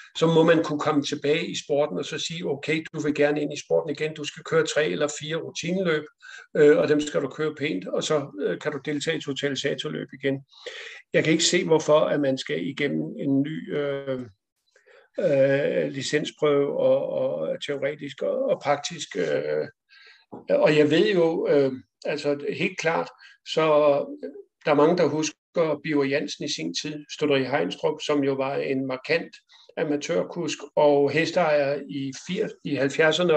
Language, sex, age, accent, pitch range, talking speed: Danish, male, 60-79, native, 145-170 Hz, 170 wpm